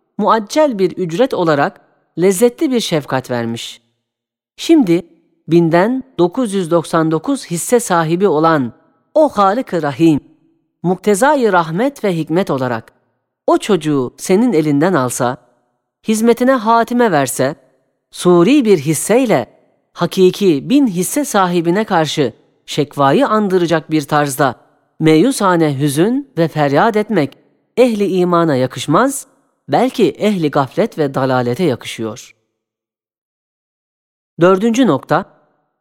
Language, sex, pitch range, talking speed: Turkish, female, 140-210 Hz, 95 wpm